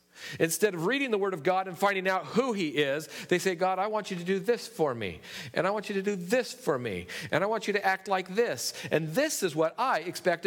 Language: English